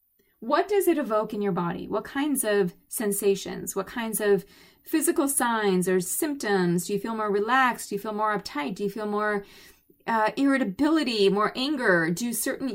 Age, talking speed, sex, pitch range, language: 30-49, 180 wpm, female, 190-230 Hz, English